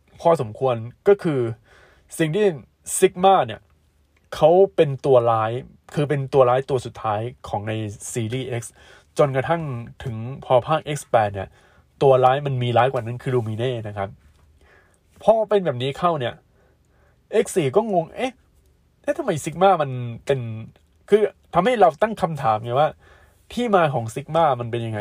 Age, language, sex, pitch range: 20-39, Thai, male, 110-155 Hz